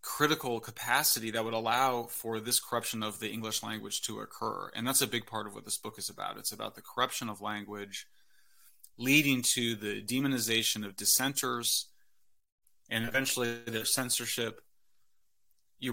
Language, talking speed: English, 160 wpm